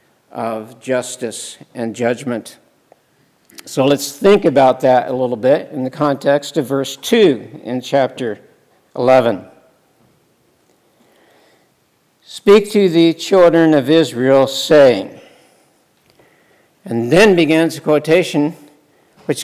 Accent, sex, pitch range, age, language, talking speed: American, male, 125-155 Hz, 60-79, English, 105 wpm